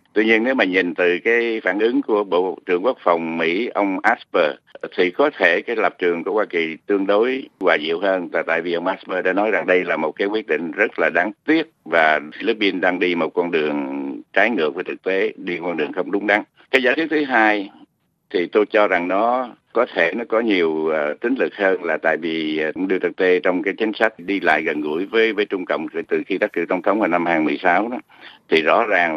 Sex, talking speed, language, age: male, 240 wpm, Vietnamese, 60-79